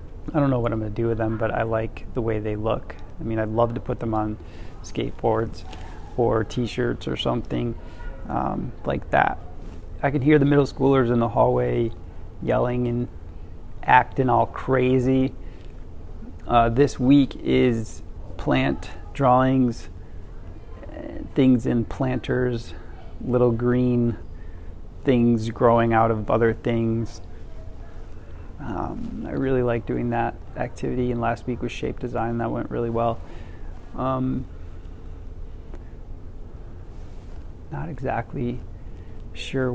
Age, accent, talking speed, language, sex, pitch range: 30-49, American, 125 wpm, English, male, 90-125 Hz